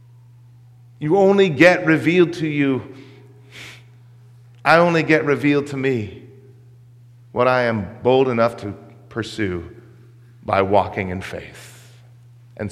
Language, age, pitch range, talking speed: English, 40-59, 120-165 Hz, 115 wpm